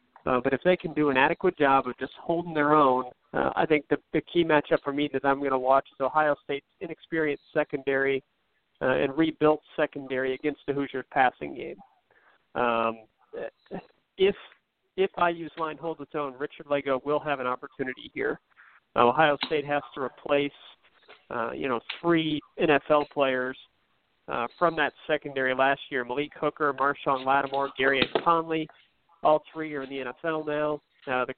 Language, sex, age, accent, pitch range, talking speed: English, male, 40-59, American, 135-155 Hz, 175 wpm